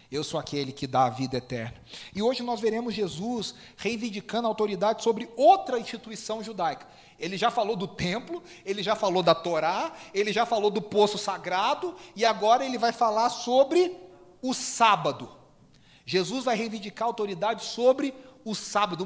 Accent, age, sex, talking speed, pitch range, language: Brazilian, 40-59, male, 165 wpm, 155-220 Hz, Portuguese